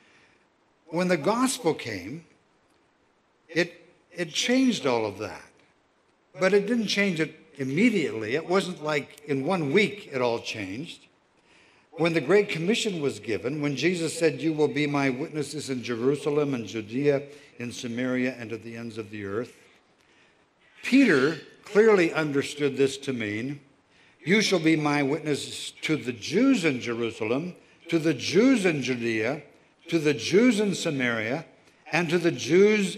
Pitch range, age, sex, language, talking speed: 135-175 Hz, 60-79, male, English, 150 wpm